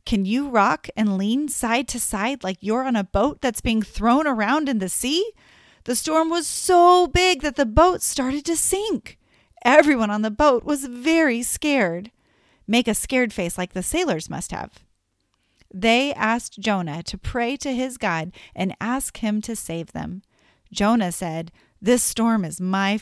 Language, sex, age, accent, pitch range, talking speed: English, female, 30-49, American, 195-280 Hz, 175 wpm